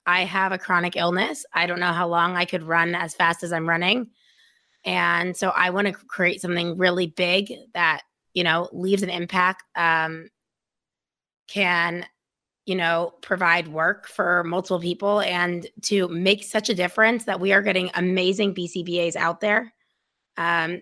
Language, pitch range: English, 175-210 Hz